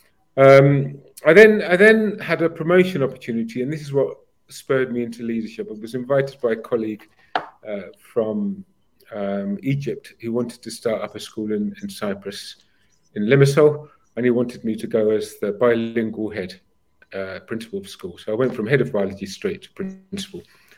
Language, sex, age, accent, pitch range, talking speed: English, male, 40-59, British, 110-145 Hz, 180 wpm